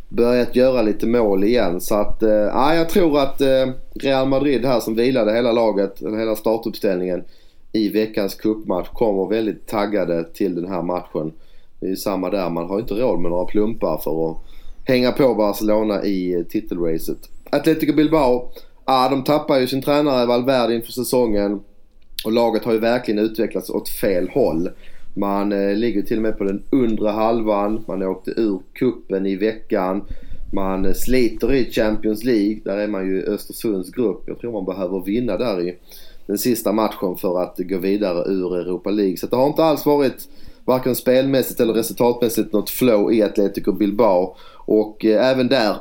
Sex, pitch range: male, 95-125 Hz